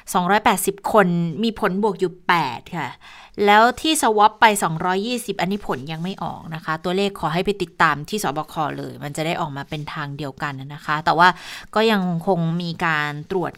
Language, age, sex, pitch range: Thai, 20-39, female, 170-210 Hz